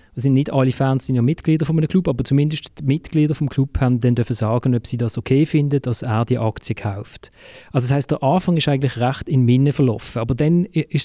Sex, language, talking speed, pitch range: male, German, 235 wpm, 125-150 Hz